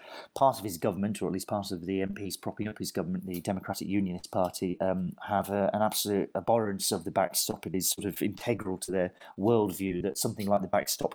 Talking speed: 220 wpm